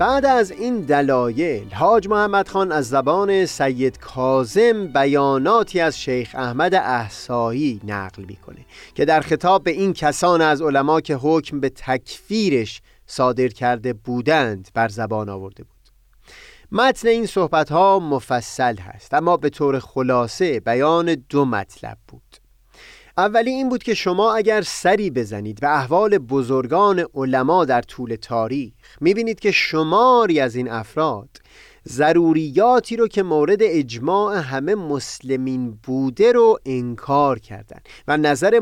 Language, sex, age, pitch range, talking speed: Persian, male, 30-49, 125-190 Hz, 135 wpm